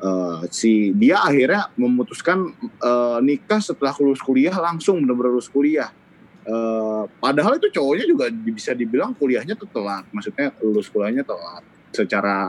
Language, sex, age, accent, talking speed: Indonesian, male, 20-39, native, 135 wpm